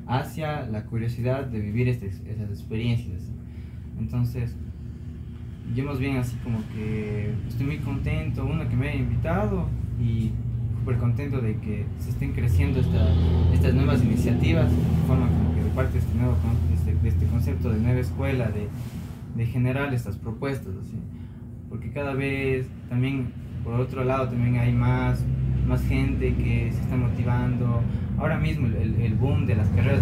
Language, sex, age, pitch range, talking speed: Spanish, male, 20-39, 110-125 Hz, 160 wpm